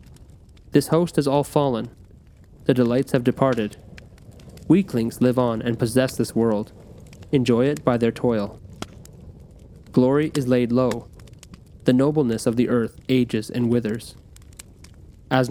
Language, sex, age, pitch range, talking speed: English, male, 20-39, 110-135 Hz, 130 wpm